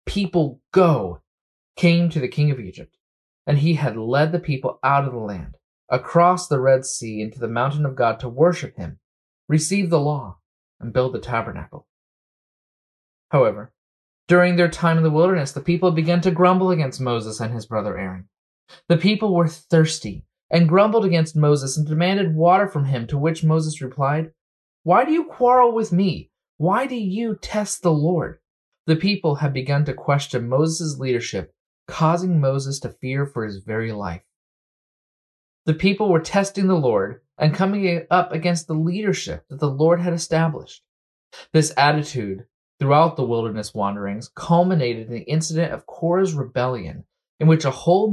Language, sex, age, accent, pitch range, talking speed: English, male, 30-49, American, 125-175 Hz, 165 wpm